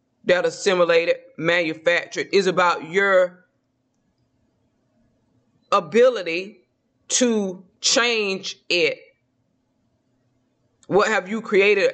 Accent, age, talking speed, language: American, 20-39, 70 wpm, English